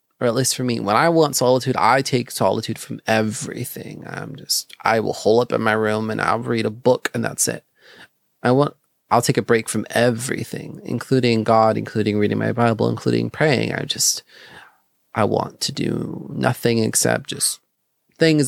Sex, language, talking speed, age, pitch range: male, English, 185 wpm, 30-49, 110-130 Hz